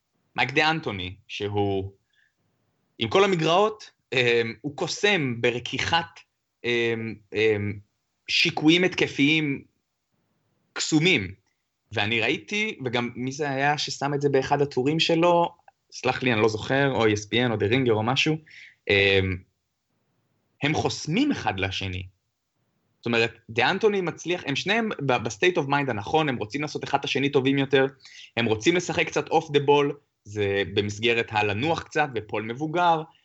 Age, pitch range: 20-39, 110-150 Hz